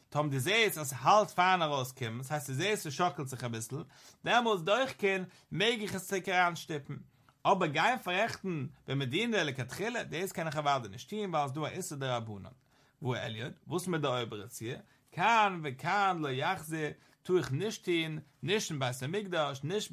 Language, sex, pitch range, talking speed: English, male, 130-185 Hz, 200 wpm